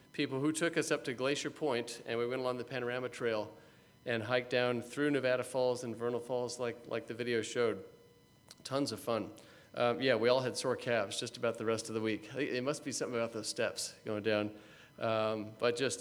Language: English